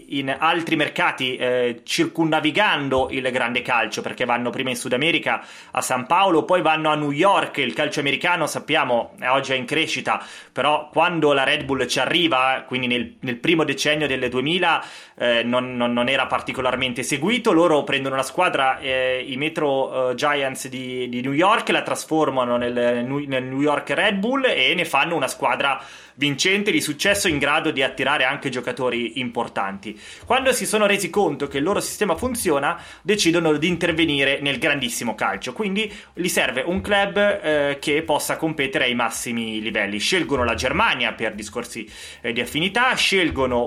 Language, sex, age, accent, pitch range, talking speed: Italian, male, 30-49, native, 130-160 Hz, 170 wpm